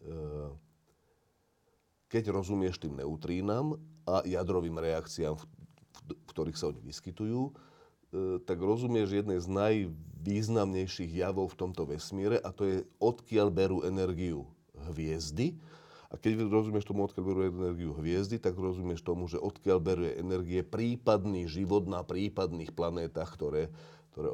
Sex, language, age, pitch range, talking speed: male, Slovak, 40-59, 80-105 Hz, 125 wpm